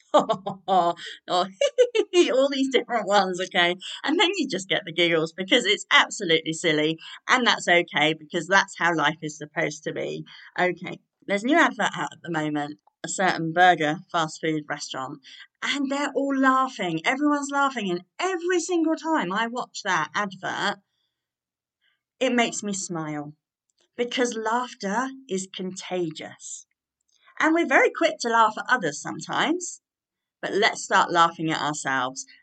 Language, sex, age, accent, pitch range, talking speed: English, female, 40-59, British, 165-265 Hz, 145 wpm